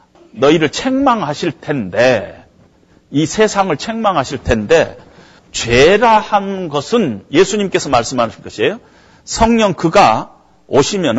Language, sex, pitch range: Korean, male, 145-225 Hz